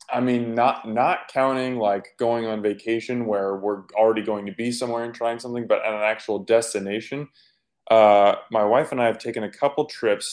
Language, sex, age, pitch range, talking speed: English, male, 20-39, 105-130 Hz, 200 wpm